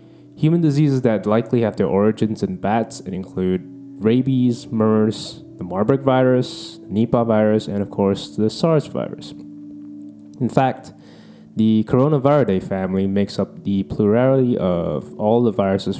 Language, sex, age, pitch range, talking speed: English, male, 20-39, 95-135 Hz, 140 wpm